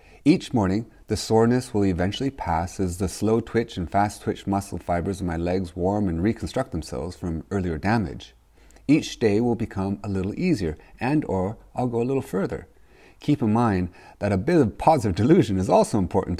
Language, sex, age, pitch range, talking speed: English, male, 40-59, 90-125 Hz, 190 wpm